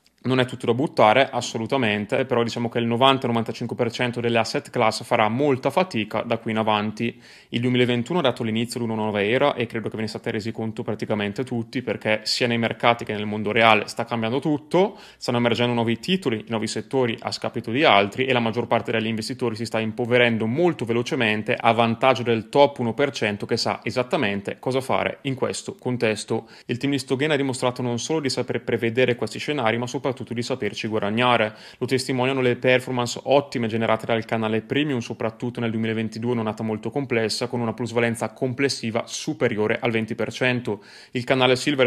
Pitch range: 115-130 Hz